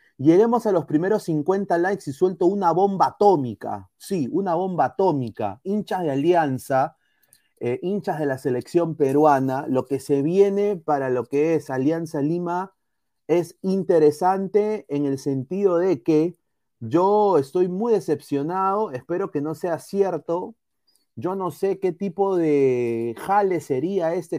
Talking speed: 145 wpm